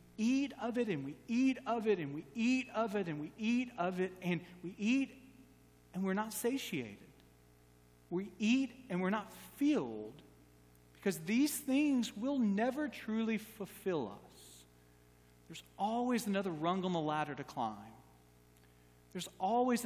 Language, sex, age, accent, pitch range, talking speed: English, male, 40-59, American, 155-230 Hz, 150 wpm